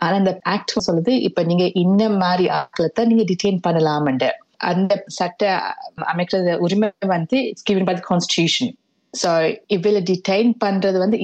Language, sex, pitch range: Tamil, female, 175-210 Hz